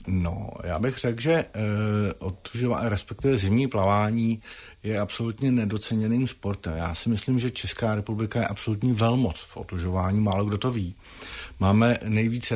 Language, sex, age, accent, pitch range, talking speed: Czech, male, 50-69, native, 95-115 Hz, 140 wpm